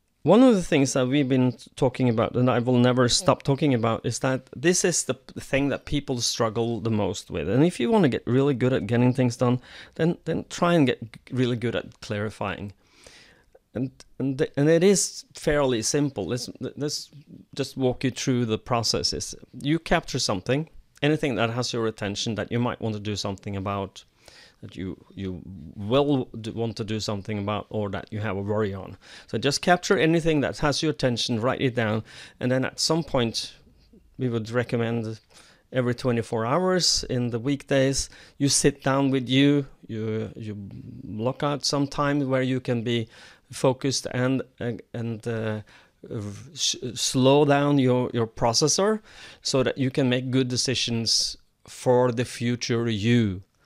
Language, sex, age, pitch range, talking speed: English, male, 30-49, 115-140 Hz, 175 wpm